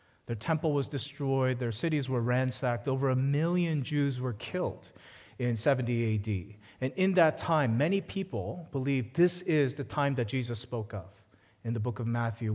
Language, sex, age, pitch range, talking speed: English, male, 30-49, 115-155 Hz, 175 wpm